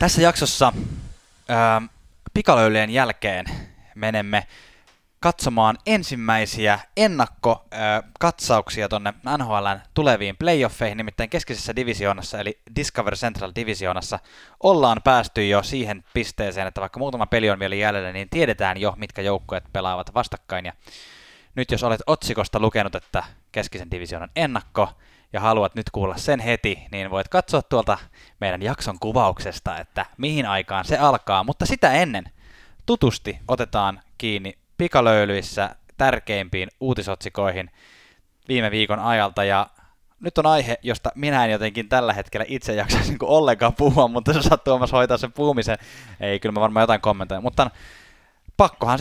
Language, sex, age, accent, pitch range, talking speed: Finnish, male, 20-39, native, 100-125 Hz, 130 wpm